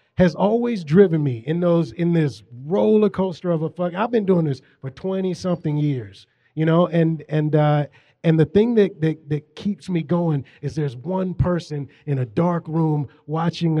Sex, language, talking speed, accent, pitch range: male, English, 190 wpm, American, 145-170 Hz